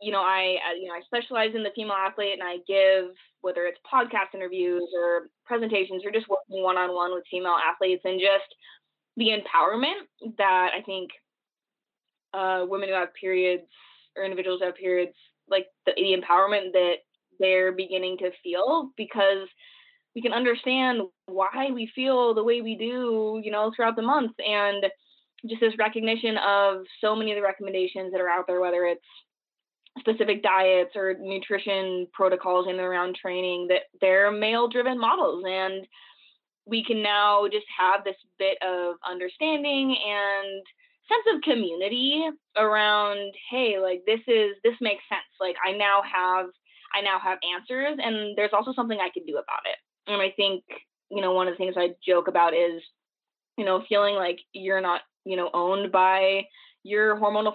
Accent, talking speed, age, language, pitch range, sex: American, 170 wpm, 20-39, English, 185-220 Hz, female